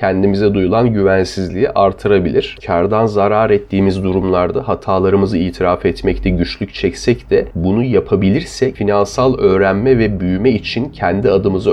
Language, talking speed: Turkish, 120 wpm